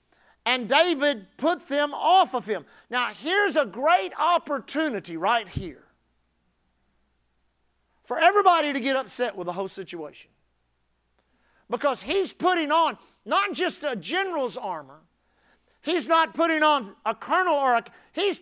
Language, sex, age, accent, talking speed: English, male, 50-69, American, 135 wpm